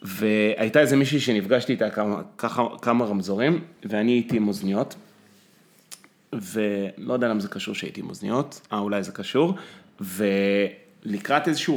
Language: Hebrew